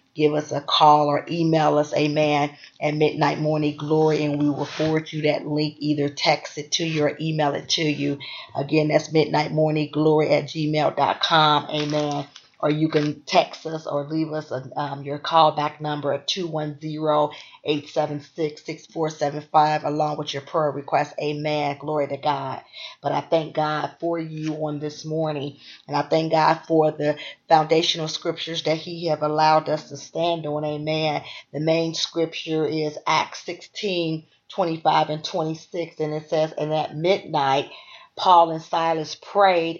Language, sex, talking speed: English, female, 160 wpm